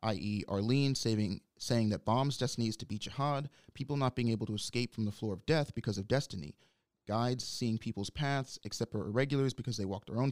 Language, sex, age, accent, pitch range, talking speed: English, male, 30-49, American, 105-125 Hz, 210 wpm